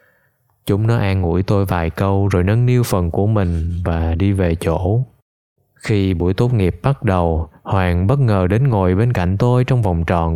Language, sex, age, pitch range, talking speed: Vietnamese, male, 20-39, 90-115 Hz, 195 wpm